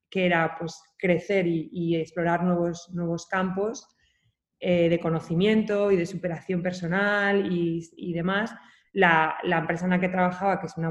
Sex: female